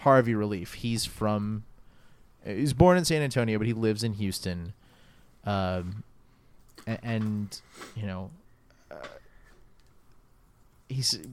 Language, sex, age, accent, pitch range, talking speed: English, male, 30-49, American, 105-130 Hz, 110 wpm